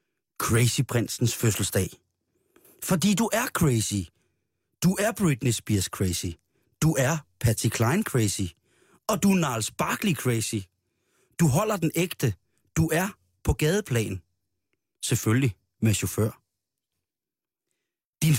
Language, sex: Danish, male